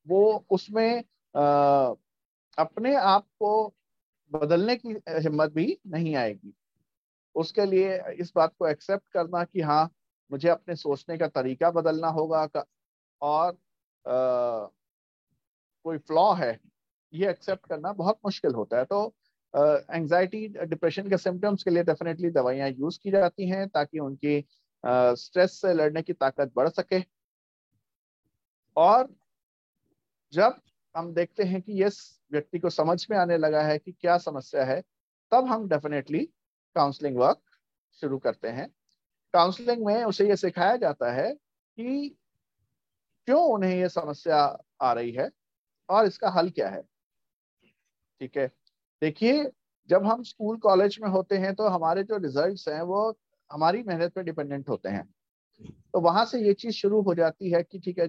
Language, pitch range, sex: Hindi, 155-200 Hz, male